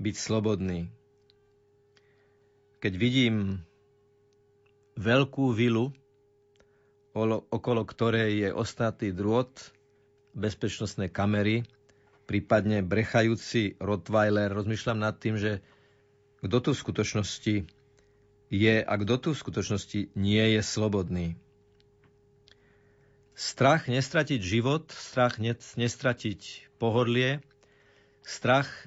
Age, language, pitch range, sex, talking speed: 50-69, Slovak, 100-135 Hz, male, 85 wpm